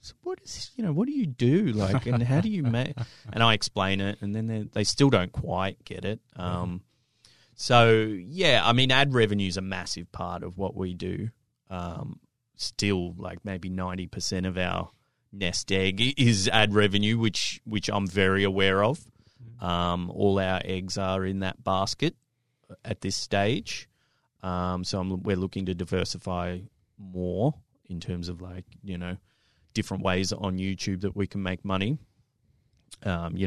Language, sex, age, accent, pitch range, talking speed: English, male, 30-49, Australian, 95-115 Hz, 180 wpm